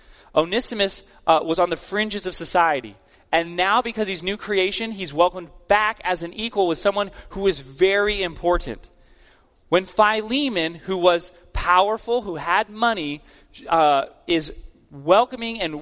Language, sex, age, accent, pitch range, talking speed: English, male, 30-49, American, 150-195 Hz, 145 wpm